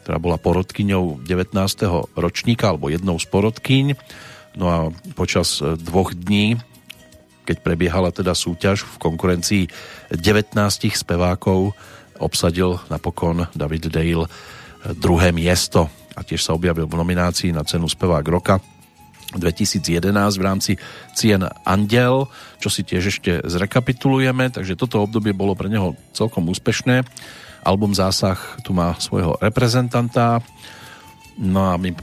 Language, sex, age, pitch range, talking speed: Slovak, male, 40-59, 85-110 Hz, 120 wpm